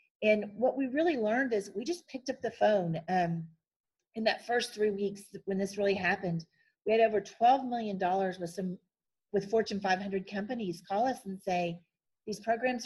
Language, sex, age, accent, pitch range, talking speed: English, female, 40-59, American, 195-230 Hz, 180 wpm